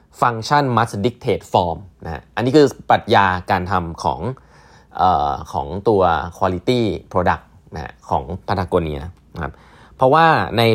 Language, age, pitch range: Thai, 20-39, 85-120 Hz